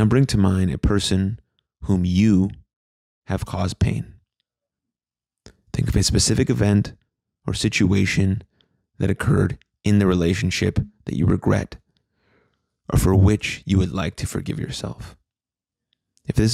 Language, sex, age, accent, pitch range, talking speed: English, male, 30-49, American, 95-110 Hz, 135 wpm